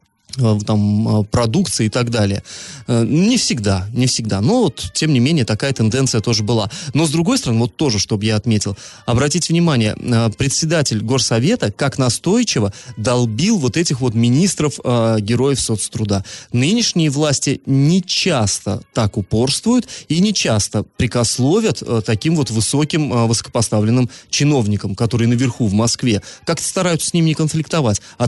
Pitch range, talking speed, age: 115-155 Hz, 140 wpm, 30-49